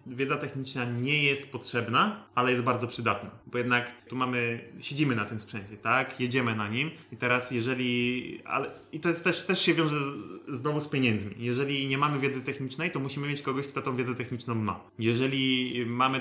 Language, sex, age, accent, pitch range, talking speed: Polish, male, 20-39, native, 120-145 Hz, 195 wpm